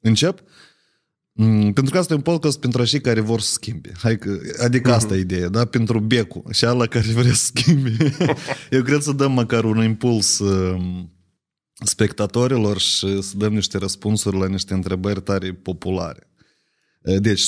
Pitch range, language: 95-120 Hz, Romanian